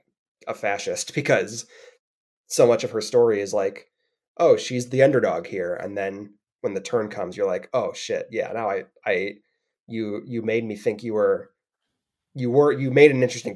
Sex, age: male, 20-39